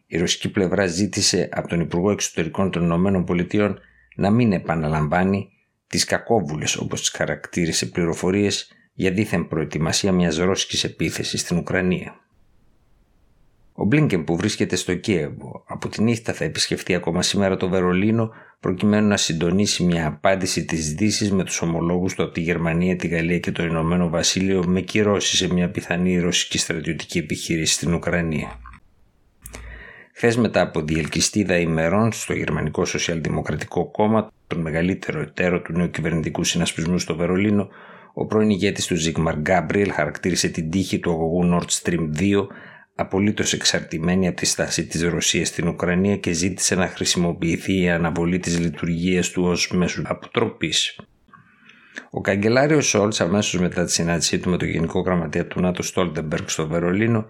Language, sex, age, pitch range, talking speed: Greek, male, 50-69, 85-100 Hz, 150 wpm